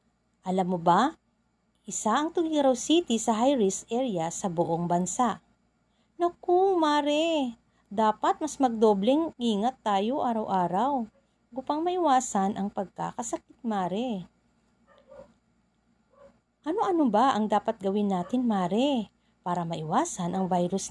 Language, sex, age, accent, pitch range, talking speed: Filipino, female, 40-59, native, 220-295 Hz, 105 wpm